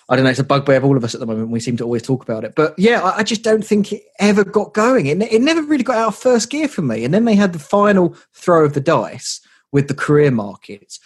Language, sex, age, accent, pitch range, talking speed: English, male, 20-39, British, 120-170 Hz, 300 wpm